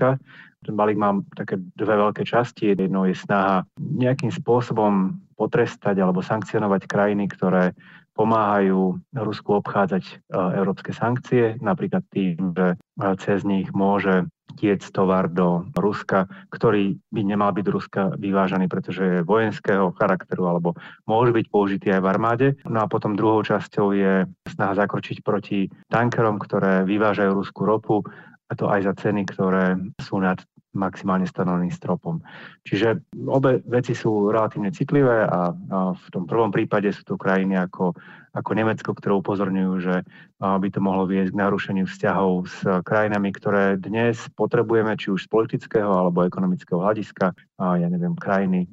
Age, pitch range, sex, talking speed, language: 30-49, 95-115 Hz, male, 145 wpm, Slovak